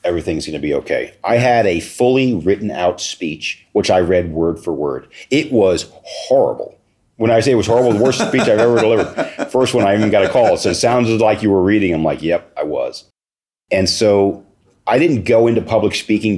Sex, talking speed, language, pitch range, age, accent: male, 220 wpm, English, 80-105 Hz, 40-59, American